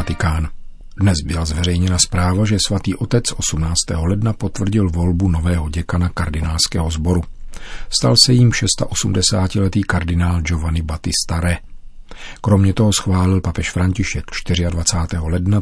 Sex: male